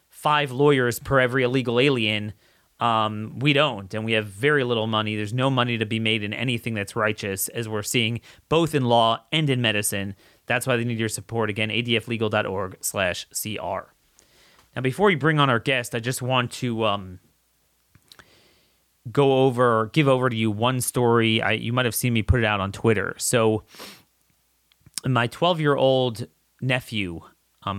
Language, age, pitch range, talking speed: English, 30-49, 105-130 Hz, 170 wpm